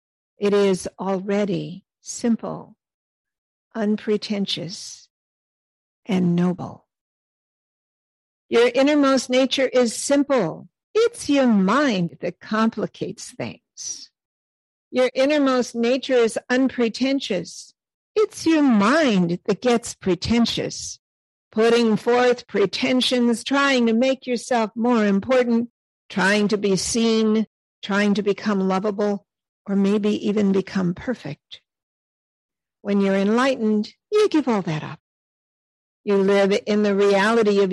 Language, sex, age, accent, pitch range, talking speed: English, female, 50-69, American, 195-245 Hz, 105 wpm